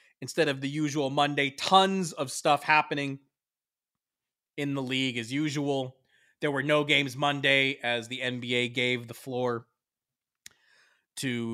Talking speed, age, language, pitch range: 135 wpm, 30-49, English, 120-150 Hz